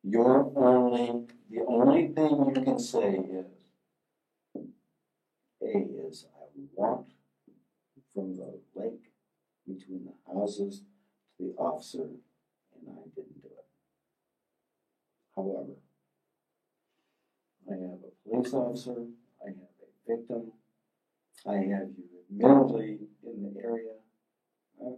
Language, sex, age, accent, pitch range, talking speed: English, male, 60-79, American, 100-130 Hz, 110 wpm